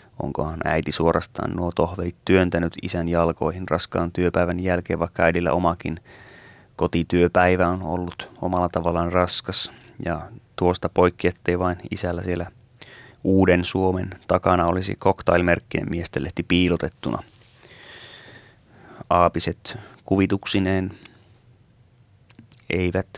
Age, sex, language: 30-49, male, Finnish